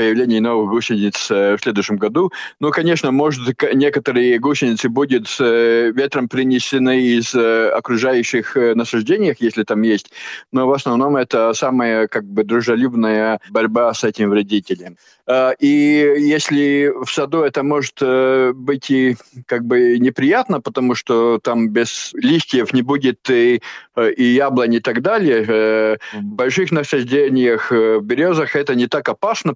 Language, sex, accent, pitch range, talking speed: Russian, male, native, 115-135 Hz, 120 wpm